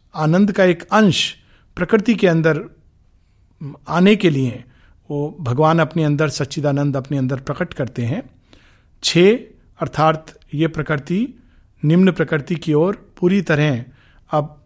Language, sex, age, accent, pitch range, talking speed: Hindi, male, 50-69, native, 135-170 Hz, 125 wpm